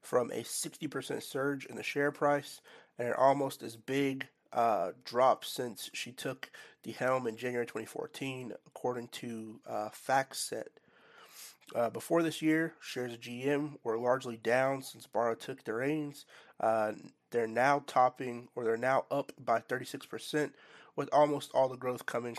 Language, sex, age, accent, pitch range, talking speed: English, male, 30-49, American, 115-135 Hz, 160 wpm